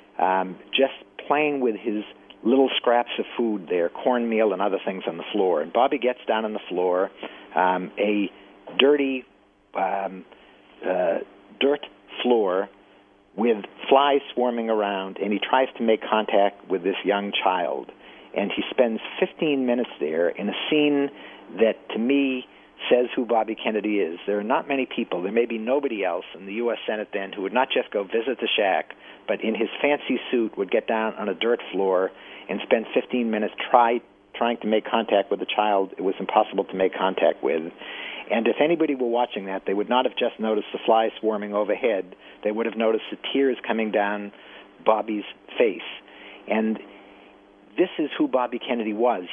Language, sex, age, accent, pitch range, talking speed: English, male, 50-69, American, 100-130 Hz, 180 wpm